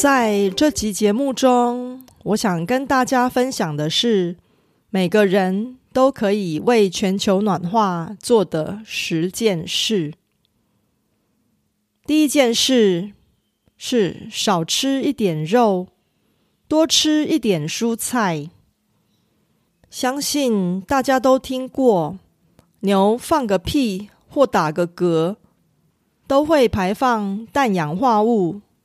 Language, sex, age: Korean, female, 30-49